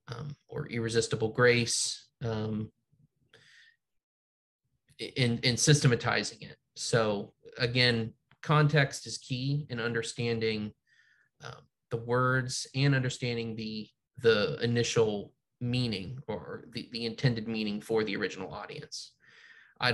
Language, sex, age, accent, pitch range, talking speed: English, male, 20-39, American, 115-145 Hz, 105 wpm